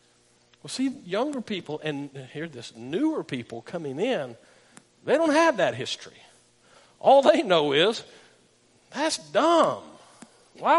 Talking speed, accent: 130 wpm, American